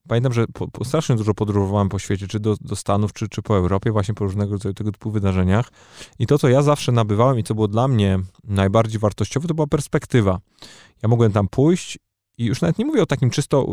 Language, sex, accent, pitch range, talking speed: Polish, male, native, 105-130 Hz, 225 wpm